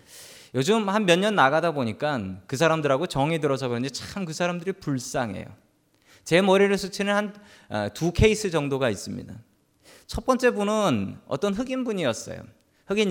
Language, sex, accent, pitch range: Korean, male, native, 125-190 Hz